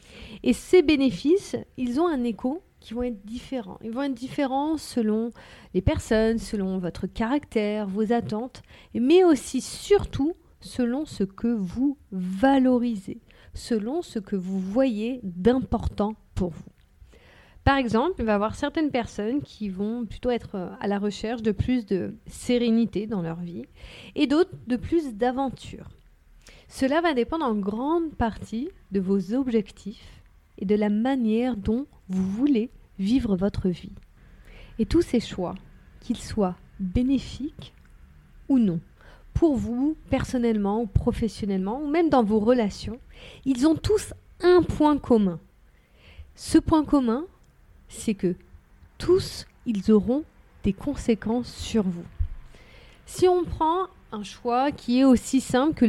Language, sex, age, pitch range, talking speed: French, female, 40-59, 205-270 Hz, 140 wpm